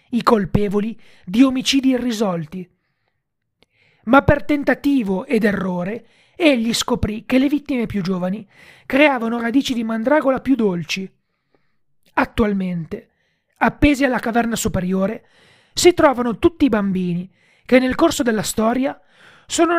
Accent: native